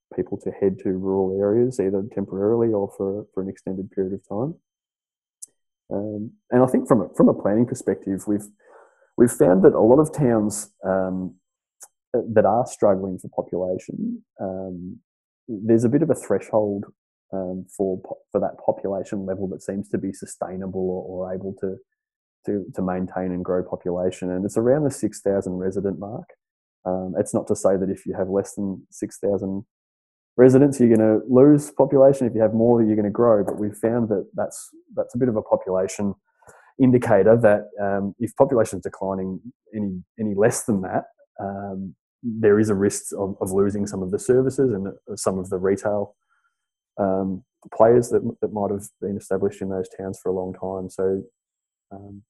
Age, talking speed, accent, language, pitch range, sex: 20-39, 185 wpm, Australian, English, 95-115 Hz, male